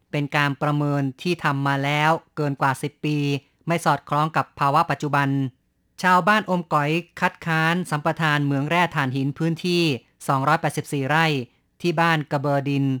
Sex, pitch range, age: female, 140-160 Hz, 30-49